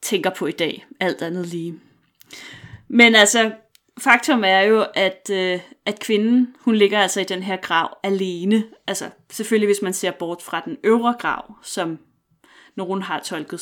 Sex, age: female, 30-49